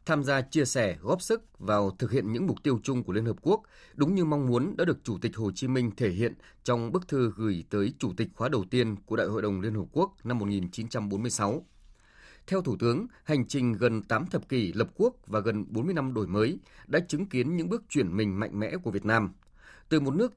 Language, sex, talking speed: Vietnamese, male, 240 wpm